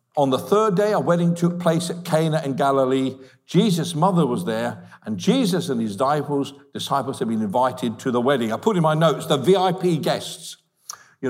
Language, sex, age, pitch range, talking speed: English, male, 60-79, 140-185 Hz, 190 wpm